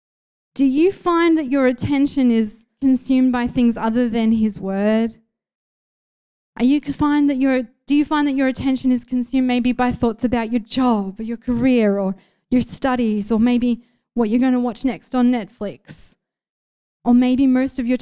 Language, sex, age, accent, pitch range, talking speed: English, female, 20-39, Australian, 195-250 Hz, 180 wpm